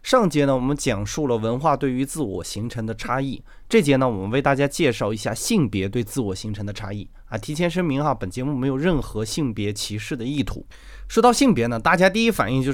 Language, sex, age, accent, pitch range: Chinese, male, 20-39, native, 115-170 Hz